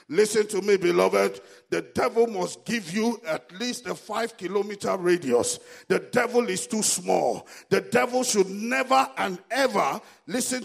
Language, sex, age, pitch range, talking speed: English, male, 50-69, 190-225 Hz, 150 wpm